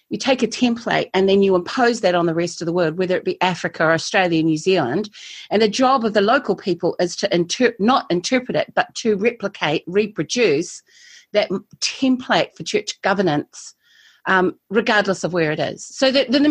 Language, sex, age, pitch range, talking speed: English, female, 40-59, 175-230 Hz, 195 wpm